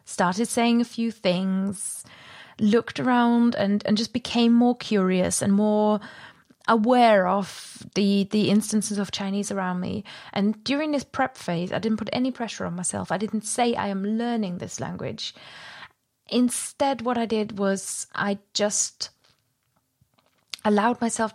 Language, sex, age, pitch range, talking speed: English, female, 20-39, 195-235 Hz, 150 wpm